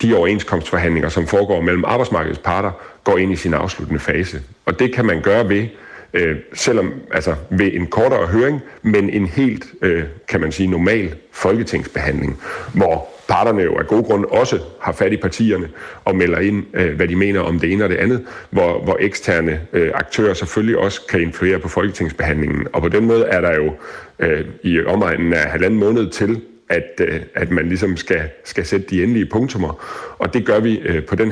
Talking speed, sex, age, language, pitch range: 190 wpm, male, 40-59, Danish, 85-105 Hz